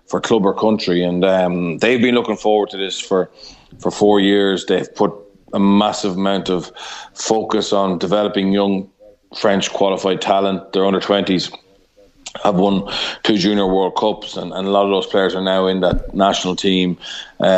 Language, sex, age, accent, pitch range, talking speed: English, male, 30-49, Irish, 90-100 Hz, 180 wpm